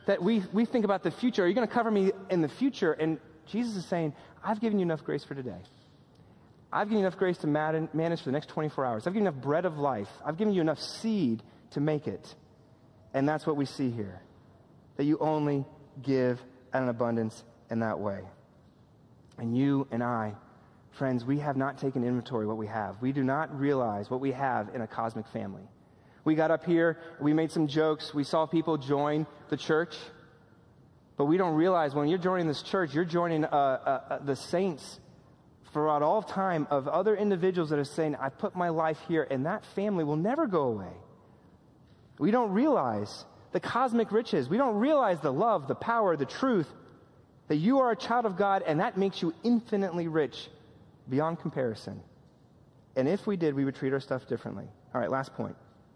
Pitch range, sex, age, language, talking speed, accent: 135-180 Hz, male, 30-49, English, 205 wpm, American